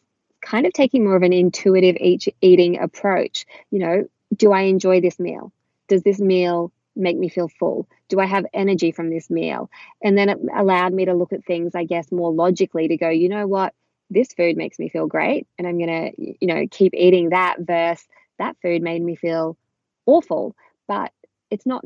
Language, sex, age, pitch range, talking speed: English, female, 20-39, 175-210 Hz, 200 wpm